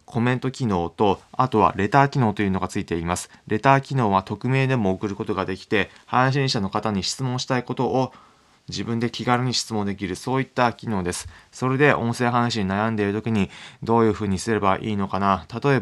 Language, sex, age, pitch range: Japanese, male, 20-39, 95-120 Hz